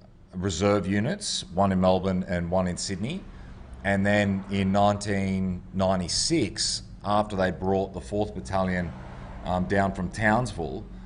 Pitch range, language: 90-100 Hz, English